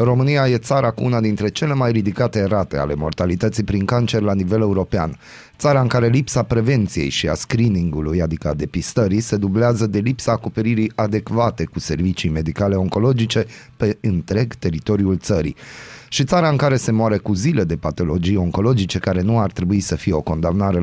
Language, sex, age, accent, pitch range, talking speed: Romanian, male, 30-49, native, 95-125 Hz, 175 wpm